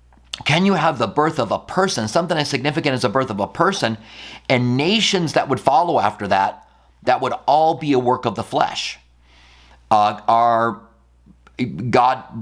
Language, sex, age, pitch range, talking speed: English, male, 40-59, 105-145 Hz, 175 wpm